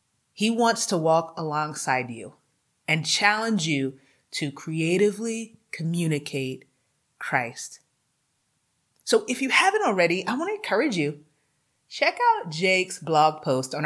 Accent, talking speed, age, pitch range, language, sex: American, 125 wpm, 30-49, 160-215 Hz, English, female